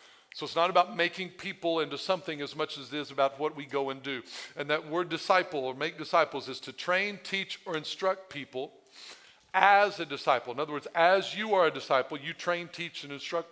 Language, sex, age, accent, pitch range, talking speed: English, male, 50-69, American, 165-225 Hz, 220 wpm